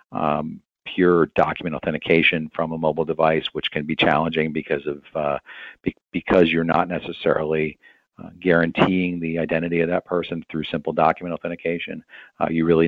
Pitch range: 80-90 Hz